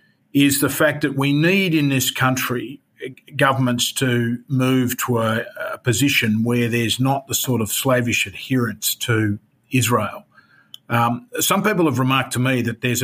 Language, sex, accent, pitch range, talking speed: English, male, Australian, 115-130 Hz, 160 wpm